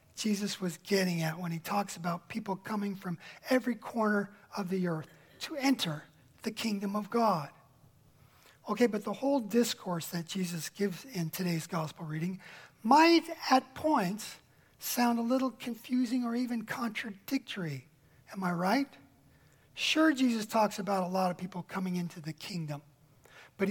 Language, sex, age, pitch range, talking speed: English, male, 40-59, 180-240 Hz, 150 wpm